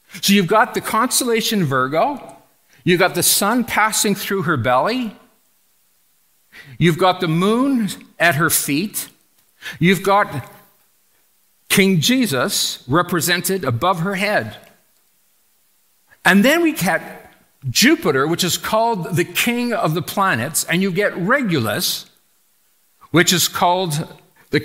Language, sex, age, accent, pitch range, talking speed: English, male, 50-69, American, 130-195 Hz, 120 wpm